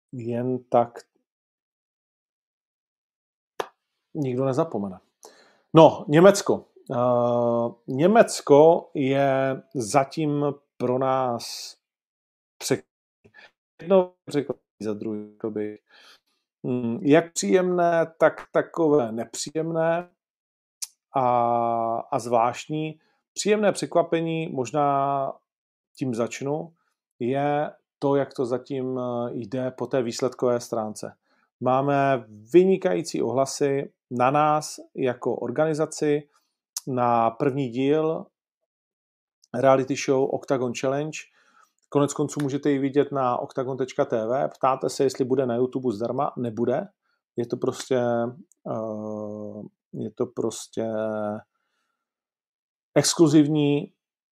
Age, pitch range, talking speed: 40-59, 120-150 Hz, 80 wpm